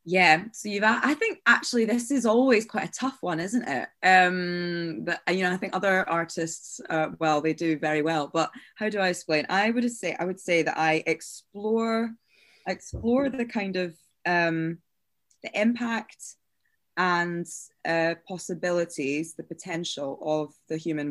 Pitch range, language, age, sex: 155-185 Hz, English, 20-39, female